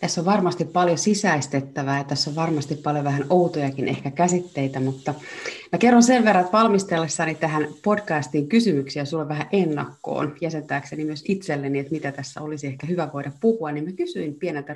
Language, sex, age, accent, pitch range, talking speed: Finnish, female, 30-49, native, 145-190 Hz, 170 wpm